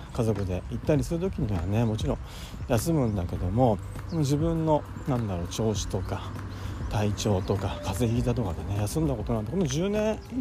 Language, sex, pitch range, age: Japanese, male, 100-140 Hz, 40-59